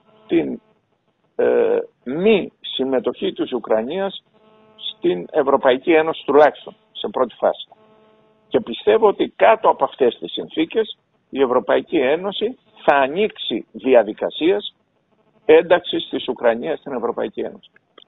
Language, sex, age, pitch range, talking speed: Greek, male, 50-69, 160-225 Hz, 110 wpm